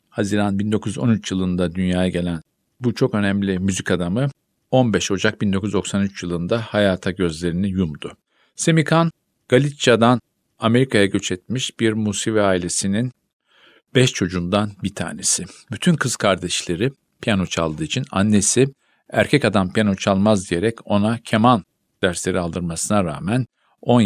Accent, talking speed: native, 115 wpm